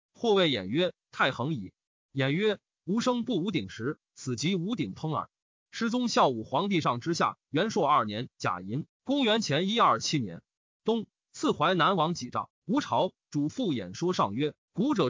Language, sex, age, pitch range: Chinese, male, 30-49, 145-215 Hz